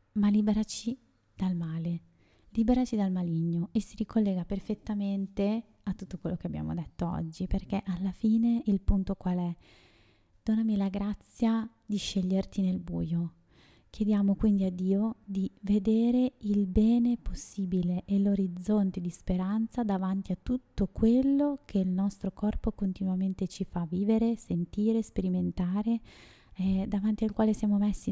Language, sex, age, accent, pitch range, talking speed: Italian, female, 20-39, native, 185-220 Hz, 140 wpm